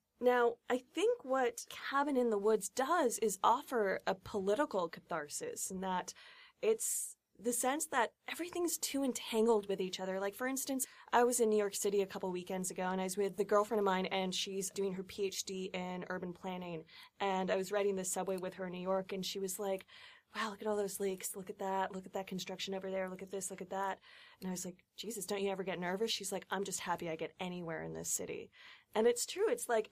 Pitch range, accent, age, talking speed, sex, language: 190-250 Hz, American, 20-39, 235 wpm, female, English